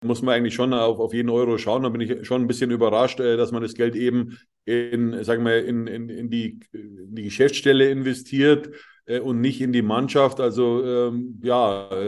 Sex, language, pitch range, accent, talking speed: male, German, 115-130 Hz, German, 175 wpm